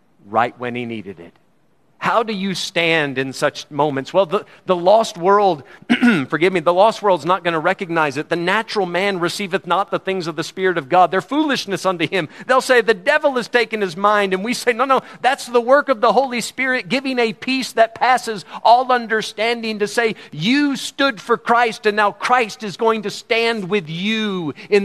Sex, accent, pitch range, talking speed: male, American, 150-220 Hz, 210 wpm